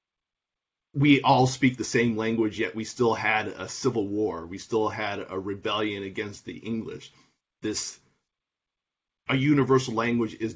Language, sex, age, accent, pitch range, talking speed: English, male, 30-49, American, 105-125 Hz, 150 wpm